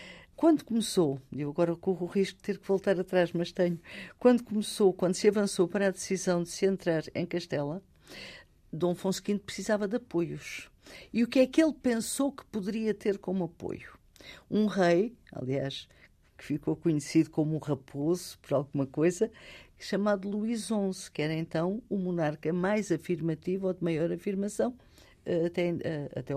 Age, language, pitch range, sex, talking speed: 50-69, Portuguese, 170-205 Hz, female, 165 wpm